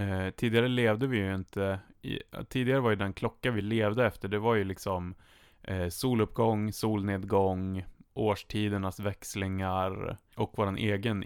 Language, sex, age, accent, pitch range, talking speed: Swedish, male, 20-39, Norwegian, 95-110 Hz, 145 wpm